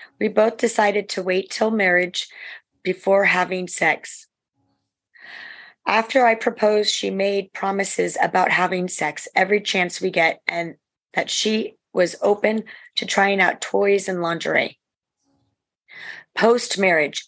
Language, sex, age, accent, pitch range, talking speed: English, female, 30-49, American, 175-205 Hz, 120 wpm